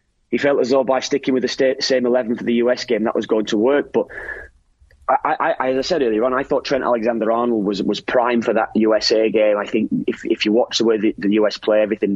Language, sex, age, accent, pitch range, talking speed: English, male, 30-49, British, 110-135 Hz, 255 wpm